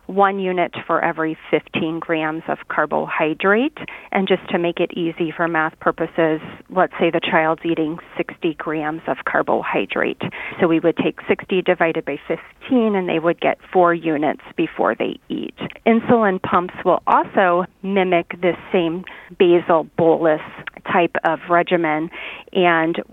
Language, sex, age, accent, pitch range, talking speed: English, female, 30-49, American, 165-195 Hz, 145 wpm